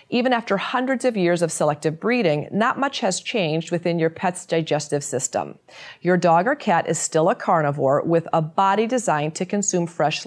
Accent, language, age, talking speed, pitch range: American, English, 30-49, 185 wpm, 155-190 Hz